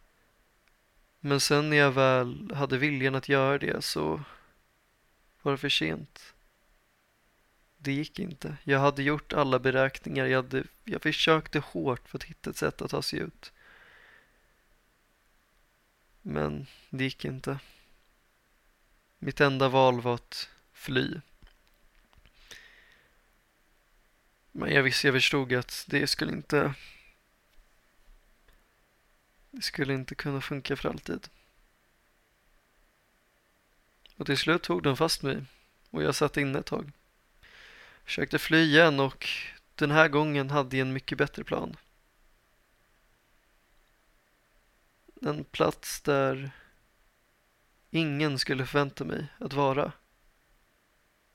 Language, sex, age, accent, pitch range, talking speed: Swedish, male, 20-39, native, 135-150 Hz, 115 wpm